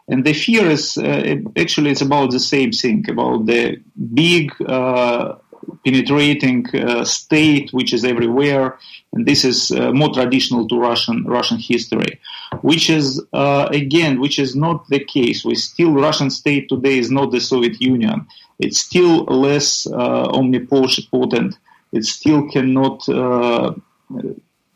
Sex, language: male, English